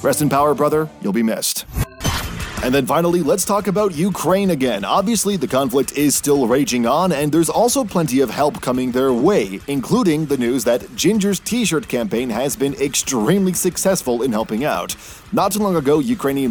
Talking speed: 180 wpm